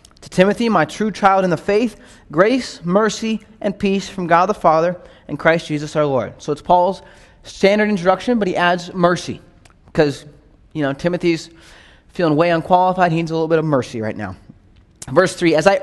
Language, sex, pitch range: English, male, 155-205 Hz